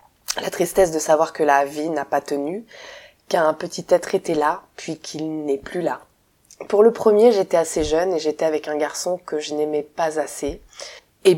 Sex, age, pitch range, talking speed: female, 20-39, 150-190 Hz, 195 wpm